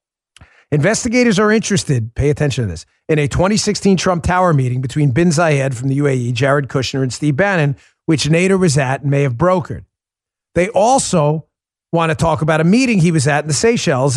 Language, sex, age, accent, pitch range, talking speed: English, male, 40-59, American, 145-215 Hz, 195 wpm